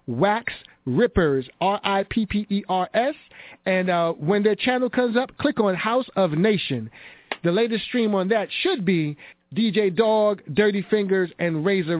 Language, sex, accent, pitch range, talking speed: English, male, American, 180-230 Hz, 140 wpm